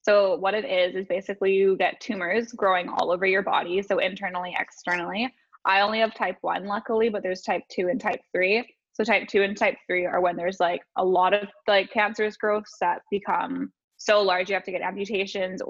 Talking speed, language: 210 wpm, English